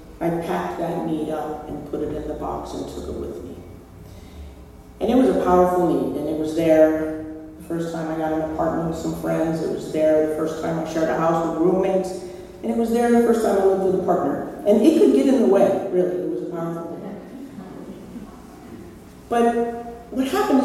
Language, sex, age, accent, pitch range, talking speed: English, female, 40-59, American, 160-195 Hz, 220 wpm